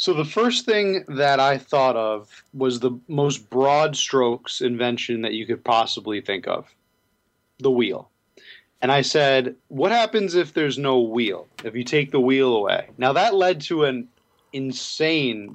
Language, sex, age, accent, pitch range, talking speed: English, male, 30-49, American, 115-140 Hz, 165 wpm